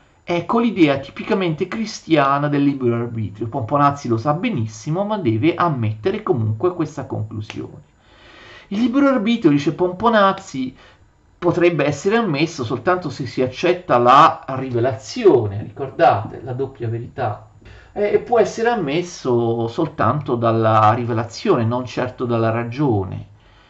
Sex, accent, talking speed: male, native, 115 wpm